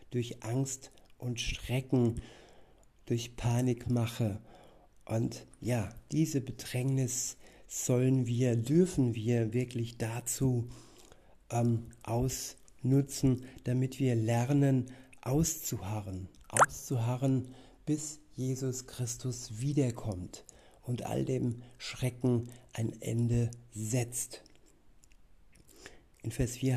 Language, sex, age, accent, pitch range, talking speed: German, male, 60-79, German, 115-130 Hz, 85 wpm